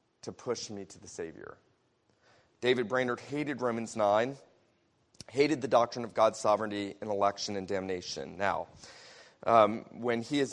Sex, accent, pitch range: male, American, 115-150 Hz